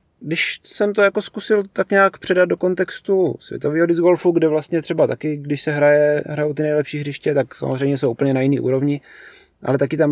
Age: 30-49